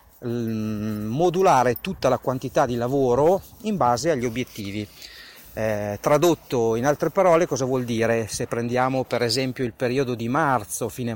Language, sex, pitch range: Italian, male, 115-155 Hz